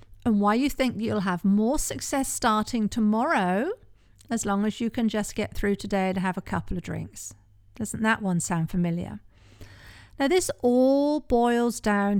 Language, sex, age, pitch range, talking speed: English, female, 50-69, 180-235 Hz, 170 wpm